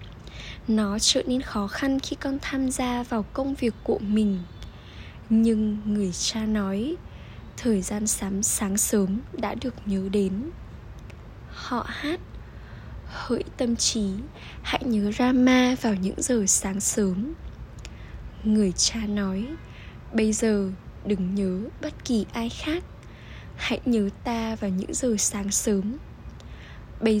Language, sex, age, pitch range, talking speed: Vietnamese, female, 10-29, 205-245 Hz, 130 wpm